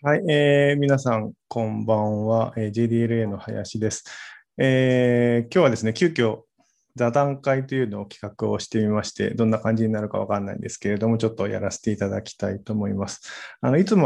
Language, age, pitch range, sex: Japanese, 20-39, 105-125 Hz, male